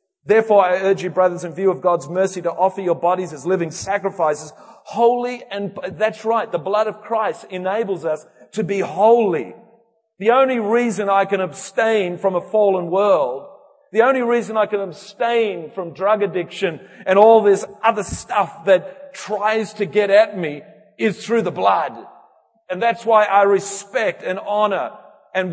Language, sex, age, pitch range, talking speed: English, male, 40-59, 190-220 Hz, 170 wpm